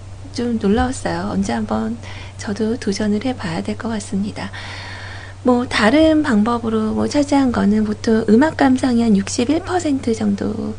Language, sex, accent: Korean, female, native